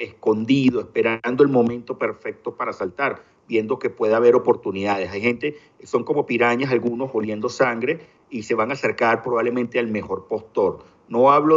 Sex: male